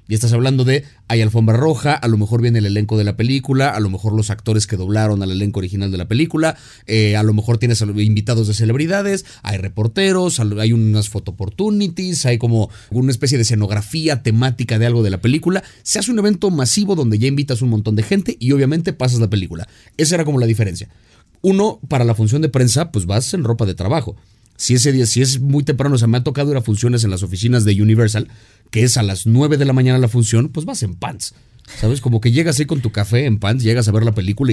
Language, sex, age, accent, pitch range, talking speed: Spanish, male, 30-49, Mexican, 110-140 Hz, 240 wpm